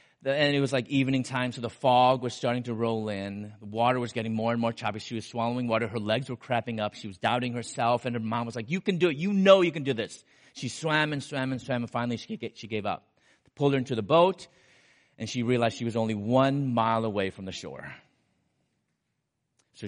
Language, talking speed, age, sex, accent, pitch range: English, 240 wpm, 30-49, male, American, 115-150 Hz